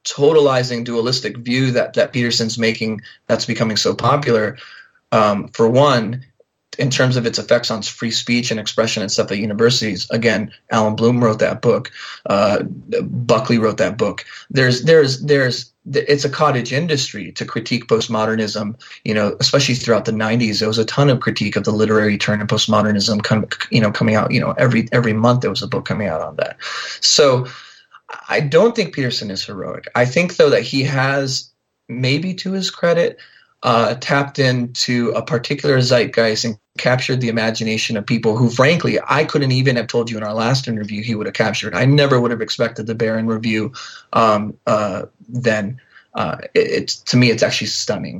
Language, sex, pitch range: English, male, 110-130 Hz